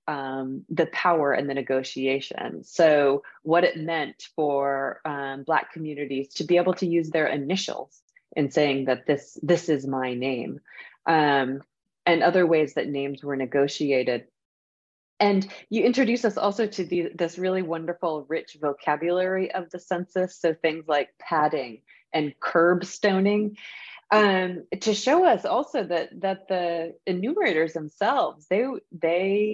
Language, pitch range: English, 140-180 Hz